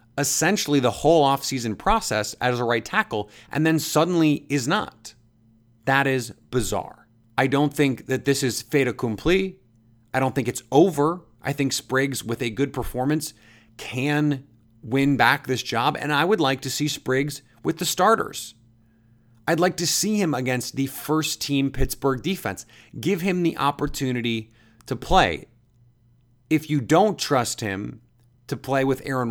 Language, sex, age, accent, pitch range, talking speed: English, male, 30-49, American, 115-145 Hz, 160 wpm